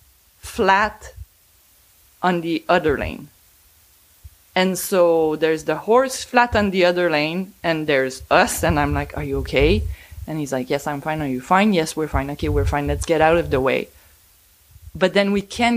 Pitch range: 135-215 Hz